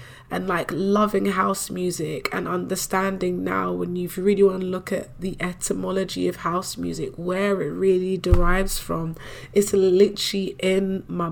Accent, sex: British, female